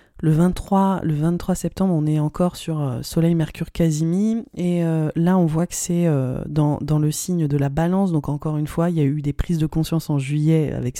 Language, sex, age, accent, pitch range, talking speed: French, female, 20-39, French, 145-175 Hz, 215 wpm